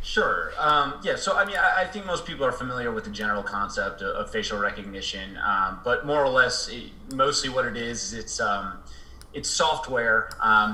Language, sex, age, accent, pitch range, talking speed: English, male, 30-49, American, 105-150 Hz, 200 wpm